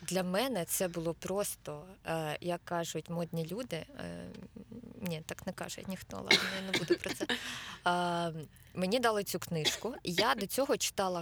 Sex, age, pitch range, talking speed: female, 20-39, 170-195 Hz, 150 wpm